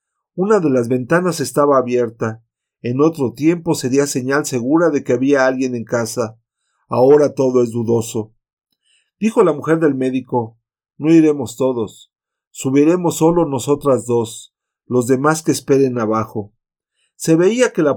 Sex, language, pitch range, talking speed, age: male, Spanish, 120-155 Hz, 145 wpm, 50-69